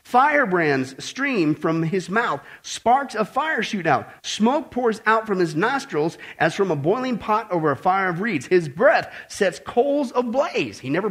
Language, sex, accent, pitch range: English, male, American, 155-230 Hz